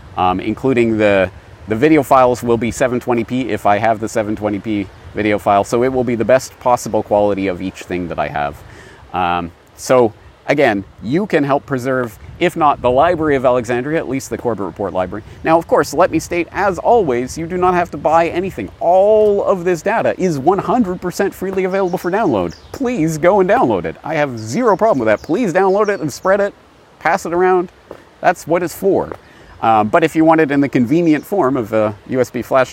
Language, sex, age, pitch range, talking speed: English, male, 30-49, 95-140 Hz, 205 wpm